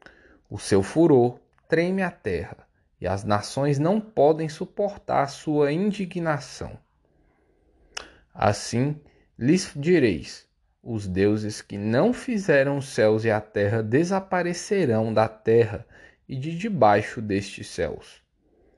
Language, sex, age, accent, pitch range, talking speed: Portuguese, male, 20-39, Brazilian, 105-170 Hz, 115 wpm